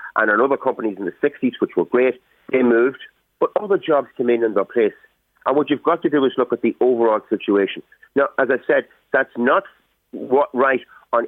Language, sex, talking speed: English, male, 220 wpm